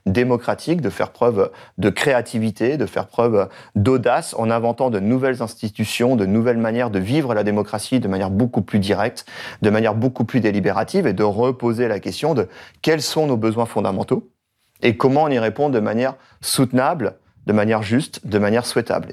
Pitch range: 110-130 Hz